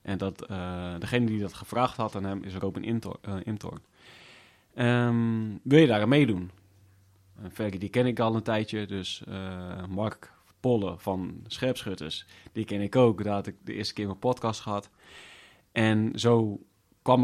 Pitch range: 95-115 Hz